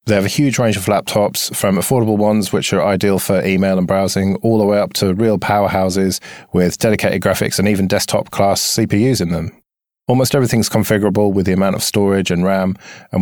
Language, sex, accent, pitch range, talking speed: English, male, British, 95-115 Hz, 200 wpm